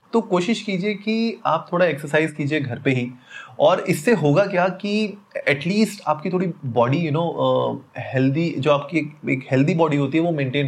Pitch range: 130-175 Hz